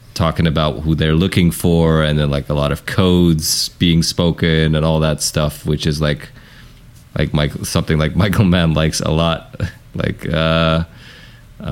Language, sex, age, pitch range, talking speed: English, male, 20-39, 80-100 Hz, 170 wpm